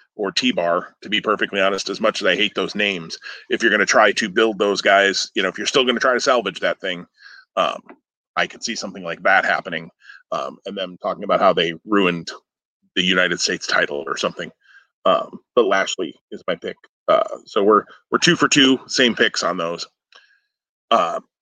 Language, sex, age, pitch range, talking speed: English, male, 30-49, 105-135 Hz, 210 wpm